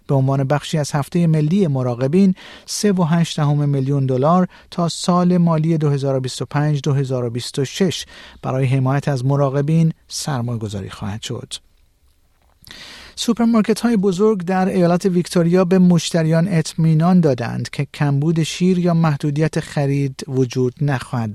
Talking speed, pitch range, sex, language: 105 wpm, 130-165 Hz, male, Persian